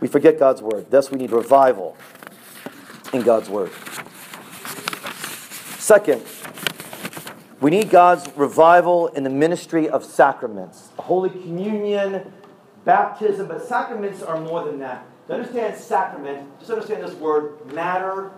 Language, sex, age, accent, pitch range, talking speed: English, male, 40-59, American, 175-265 Hz, 125 wpm